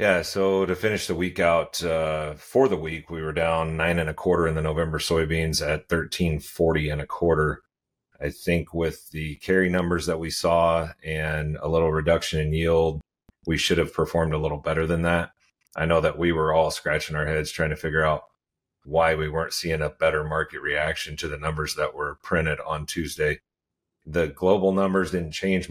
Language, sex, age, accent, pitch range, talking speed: English, male, 40-59, American, 80-90 Hz, 200 wpm